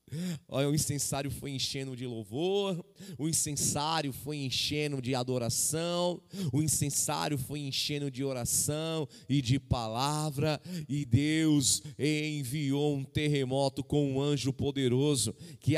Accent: Brazilian